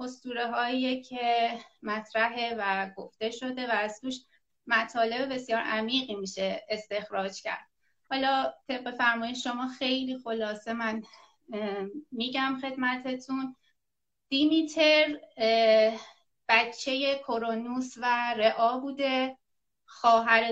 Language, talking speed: Persian, 90 wpm